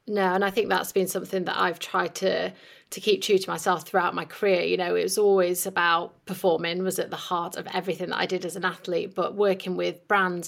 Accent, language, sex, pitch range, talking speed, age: British, English, female, 175-195 Hz, 240 wpm, 30-49